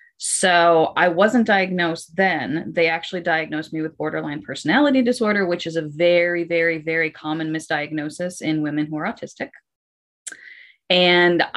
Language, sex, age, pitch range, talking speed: English, female, 30-49, 160-210 Hz, 140 wpm